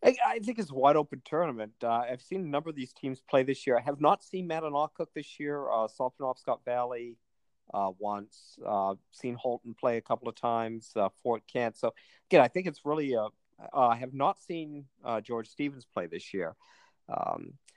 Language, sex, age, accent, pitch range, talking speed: English, male, 50-69, American, 105-140 Hz, 210 wpm